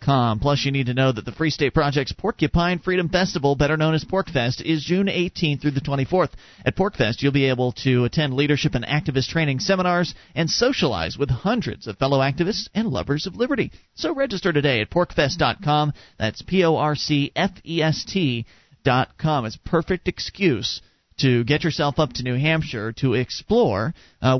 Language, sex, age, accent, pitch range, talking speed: English, male, 40-59, American, 125-155 Hz, 170 wpm